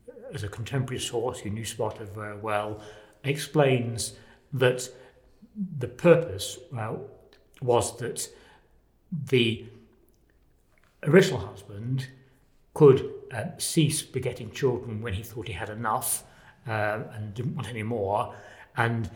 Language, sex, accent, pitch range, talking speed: English, male, British, 105-130 Hz, 115 wpm